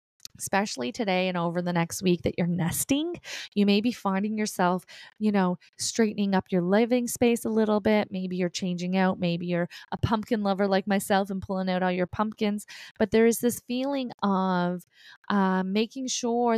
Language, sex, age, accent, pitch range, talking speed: English, female, 20-39, American, 185-220 Hz, 185 wpm